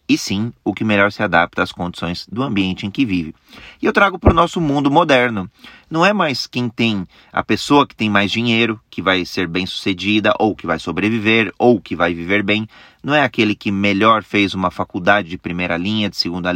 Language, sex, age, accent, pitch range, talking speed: Portuguese, male, 30-49, Brazilian, 95-120 Hz, 220 wpm